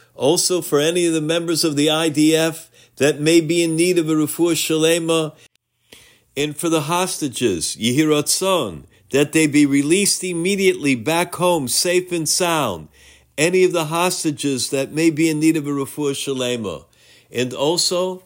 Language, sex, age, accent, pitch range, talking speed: English, male, 50-69, American, 140-180 Hz, 160 wpm